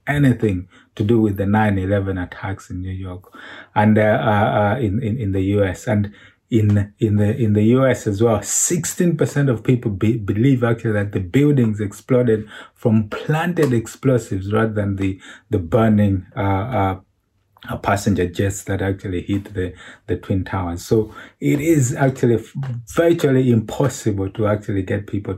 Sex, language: male, English